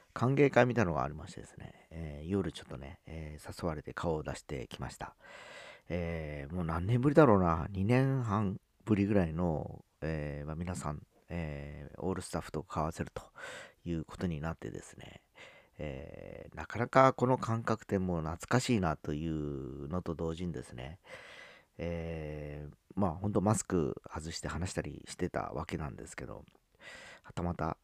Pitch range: 75-100 Hz